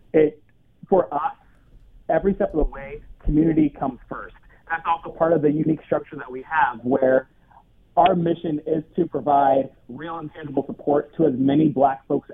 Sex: male